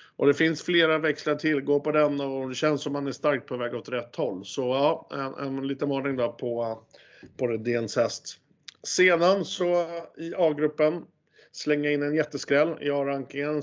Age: 50-69